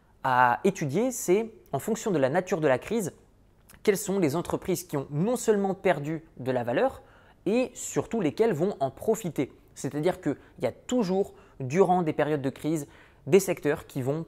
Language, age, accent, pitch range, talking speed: French, 20-39, French, 135-180 Hz, 190 wpm